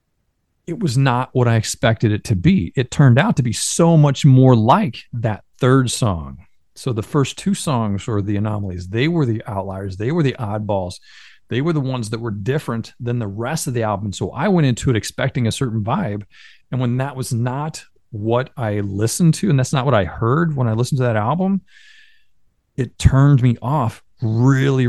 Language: English